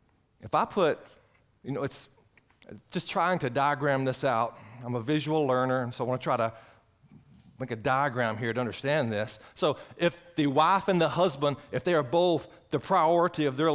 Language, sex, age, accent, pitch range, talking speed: English, male, 40-59, American, 110-135 Hz, 190 wpm